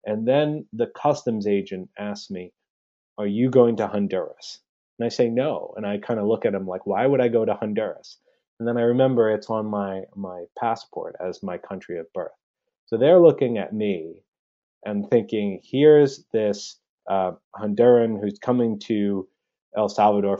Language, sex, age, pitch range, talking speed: English, male, 30-49, 100-130 Hz, 175 wpm